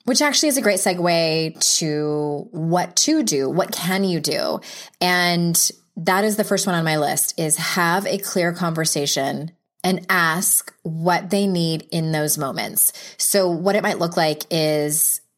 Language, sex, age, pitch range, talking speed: English, female, 20-39, 160-205 Hz, 170 wpm